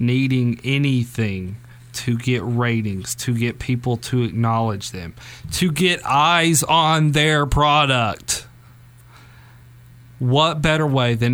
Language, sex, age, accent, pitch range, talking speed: English, male, 30-49, American, 120-140 Hz, 110 wpm